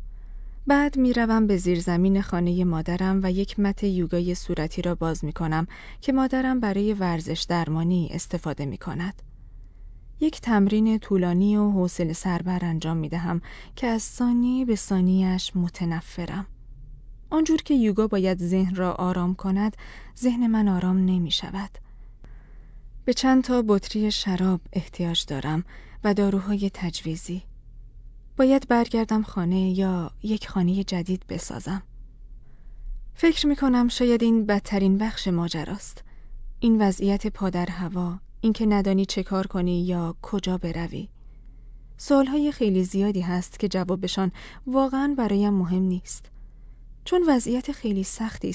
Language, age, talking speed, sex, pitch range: Persian, 20-39, 130 wpm, female, 175-220 Hz